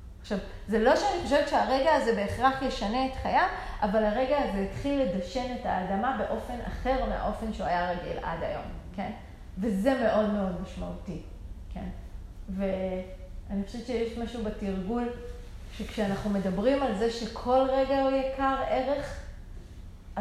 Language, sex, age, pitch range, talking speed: Hebrew, female, 30-49, 190-245 Hz, 135 wpm